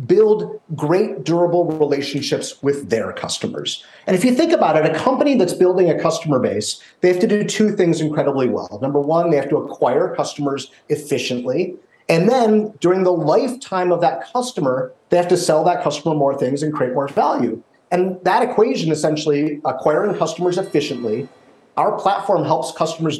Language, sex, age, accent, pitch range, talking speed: English, male, 40-59, American, 150-185 Hz, 175 wpm